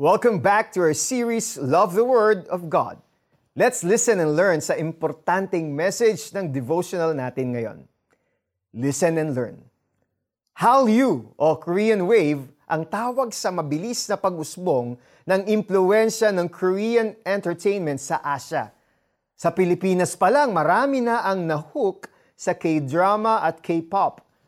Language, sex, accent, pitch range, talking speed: Filipino, male, native, 155-220 Hz, 130 wpm